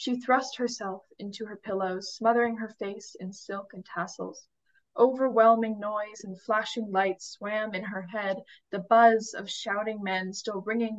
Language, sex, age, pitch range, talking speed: English, female, 10-29, 190-230 Hz, 160 wpm